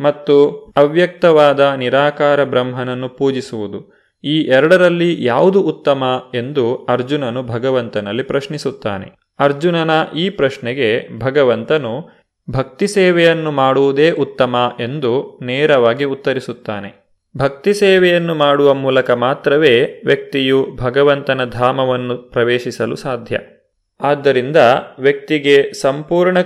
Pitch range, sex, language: 125-155 Hz, male, Kannada